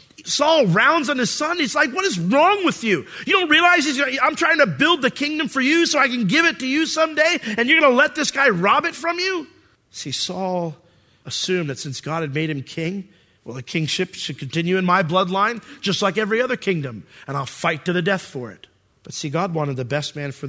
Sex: male